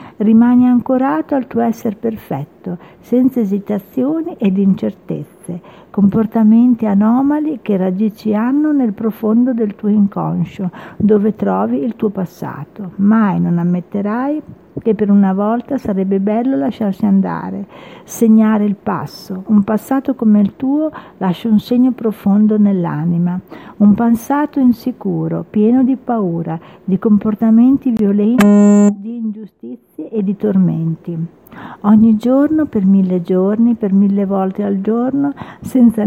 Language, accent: Italian, native